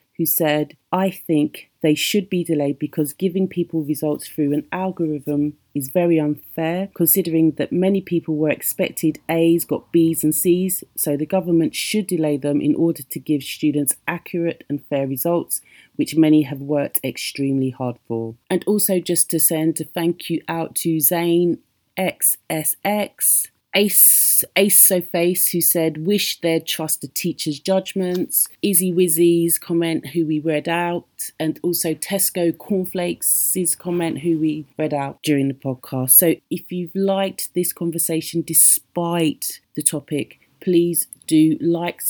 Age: 30-49